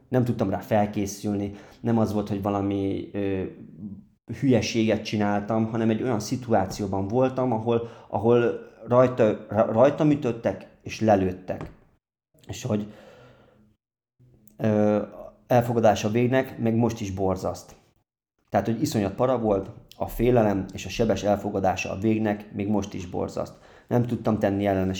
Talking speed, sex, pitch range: 130 wpm, male, 95-115 Hz